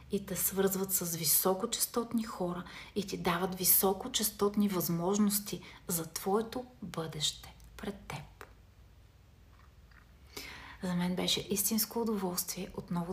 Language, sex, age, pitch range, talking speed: Bulgarian, female, 30-49, 170-215 Hz, 100 wpm